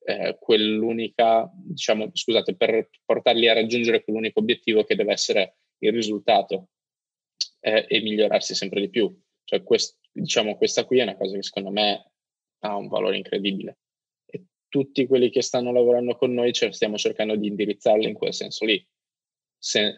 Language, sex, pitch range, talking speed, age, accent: Italian, male, 100-135 Hz, 160 wpm, 20-39, native